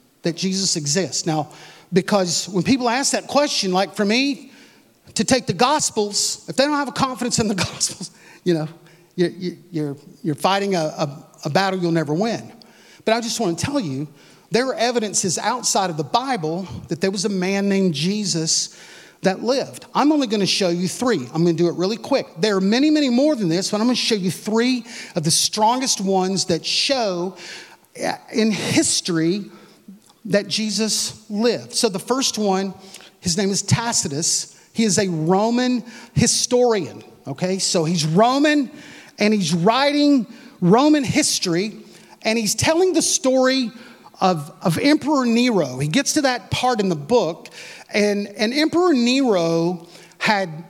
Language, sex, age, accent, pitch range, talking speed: English, male, 40-59, American, 175-235 Hz, 170 wpm